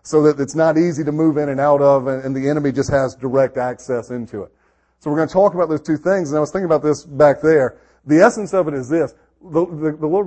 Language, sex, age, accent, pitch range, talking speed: English, male, 40-59, American, 140-170 Hz, 270 wpm